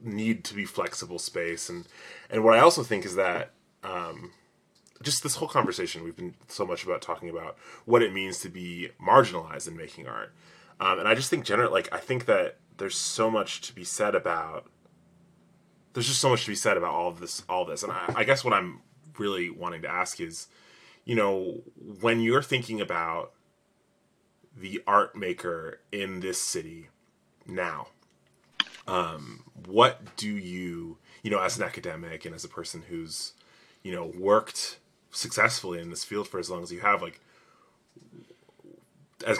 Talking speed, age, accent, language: 175 wpm, 30-49, American, English